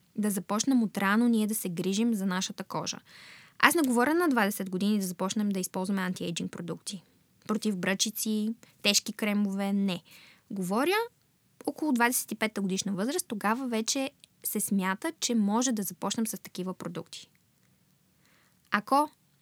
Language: Bulgarian